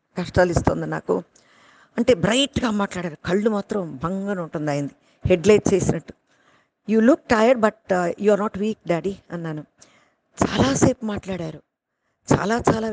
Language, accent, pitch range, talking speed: Telugu, native, 170-205 Hz, 120 wpm